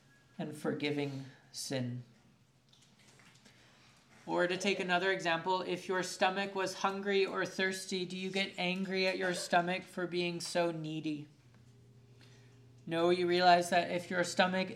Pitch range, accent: 135-180 Hz, American